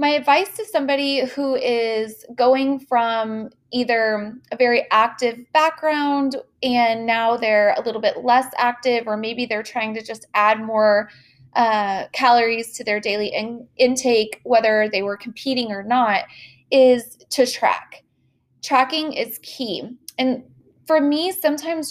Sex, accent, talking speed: female, American, 140 wpm